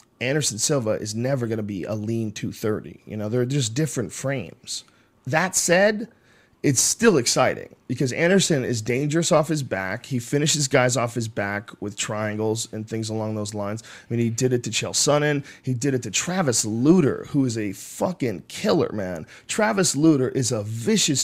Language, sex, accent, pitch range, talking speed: English, male, American, 115-160 Hz, 185 wpm